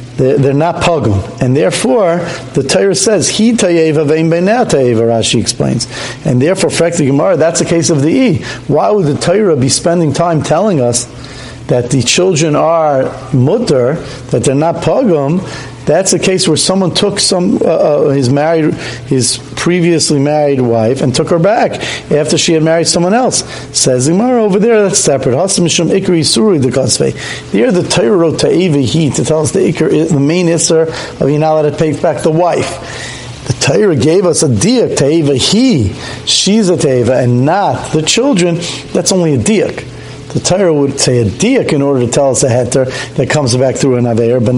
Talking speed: 180 wpm